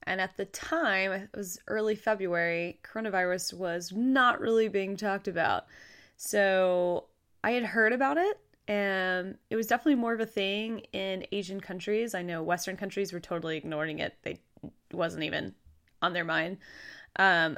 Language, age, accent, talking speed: English, 20-39, American, 160 wpm